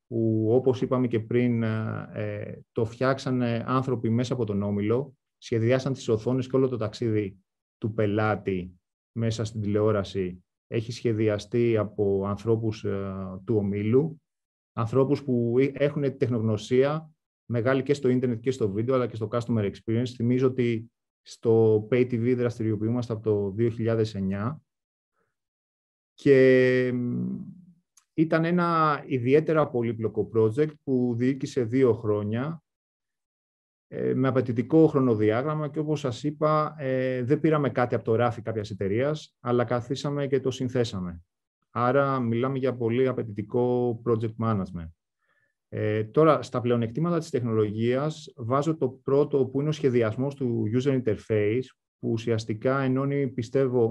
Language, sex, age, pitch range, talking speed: Greek, male, 30-49, 110-130 Hz, 125 wpm